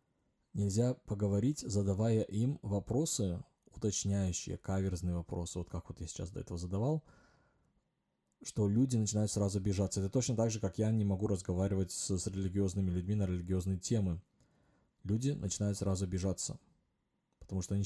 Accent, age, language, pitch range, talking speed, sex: native, 20-39, Russian, 90-105 Hz, 150 wpm, male